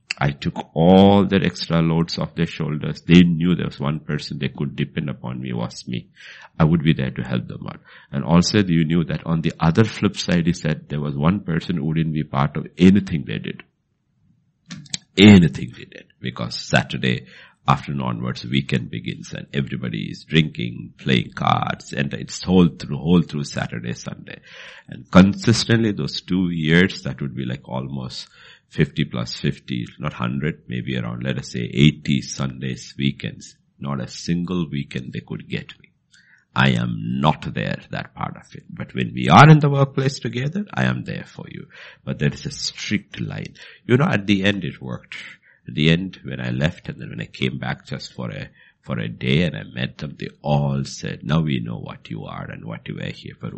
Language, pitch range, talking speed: English, 65-90 Hz, 200 wpm